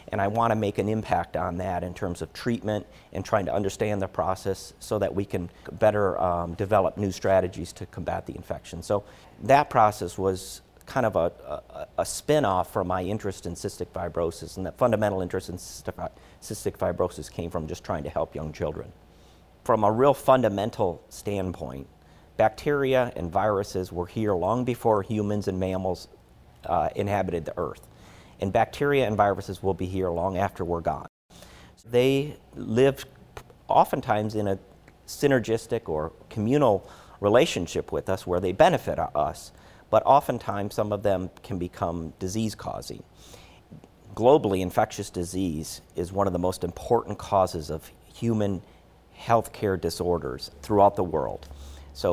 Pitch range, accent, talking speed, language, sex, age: 85-105 Hz, American, 155 wpm, English, male, 50-69